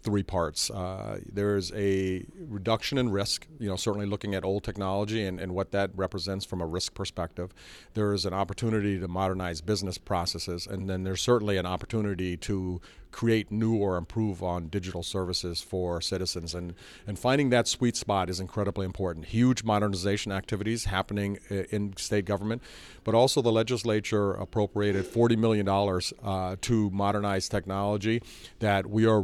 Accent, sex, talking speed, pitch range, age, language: American, male, 160 wpm, 95-105 Hz, 40-59, English